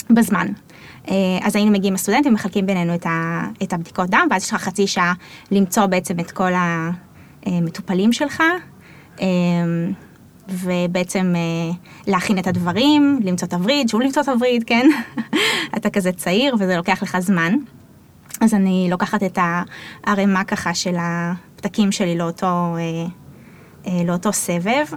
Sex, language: female, Hebrew